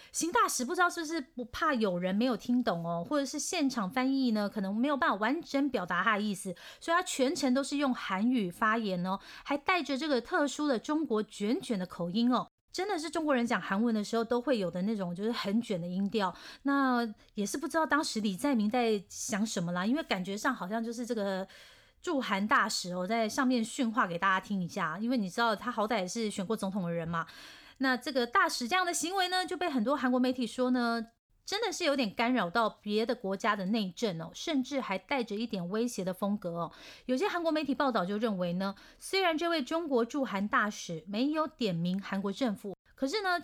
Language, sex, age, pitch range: Chinese, female, 30-49, 200-270 Hz